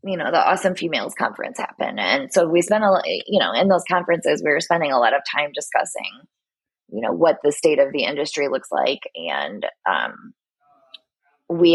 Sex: female